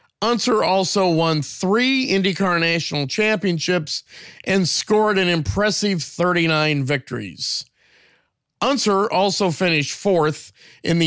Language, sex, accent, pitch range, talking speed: English, male, American, 150-195 Hz, 105 wpm